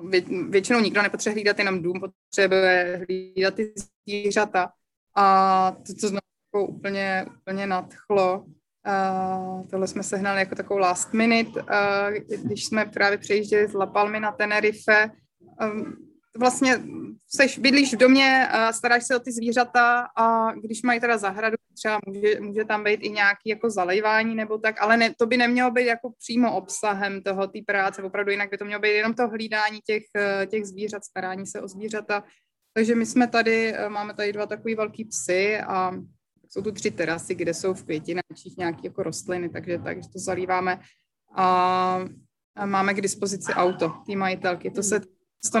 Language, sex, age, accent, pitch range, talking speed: Czech, female, 20-39, native, 195-225 Hz, 160 wpm